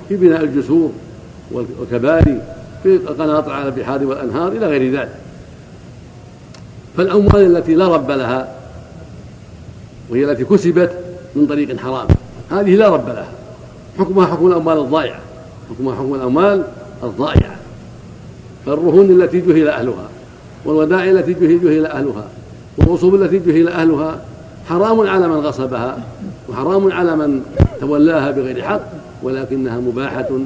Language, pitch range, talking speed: Arabic, 125-170 Hz, 115 wpm